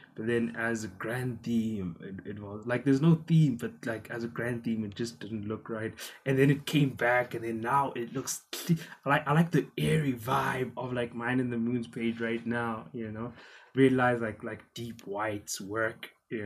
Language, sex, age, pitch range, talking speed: English, male, 20-39, 105-130 Hz, 210 wpm